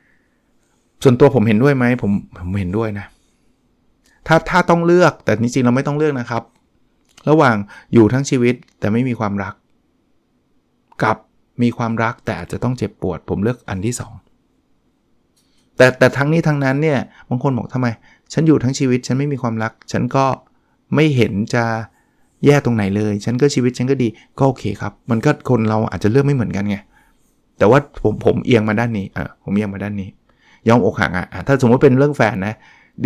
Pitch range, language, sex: 110-145 Hz, Thai, male